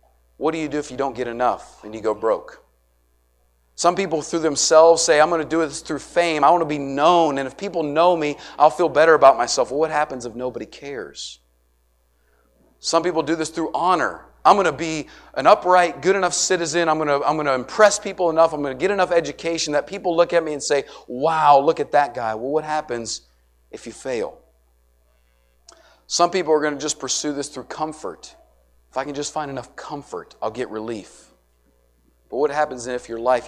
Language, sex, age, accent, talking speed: English, male, 40-59, American, 210 wpm